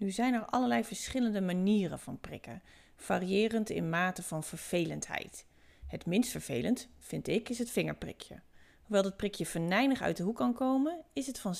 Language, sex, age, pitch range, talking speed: Dutch, female, 40-59, 175-245 Hz, 170 wpm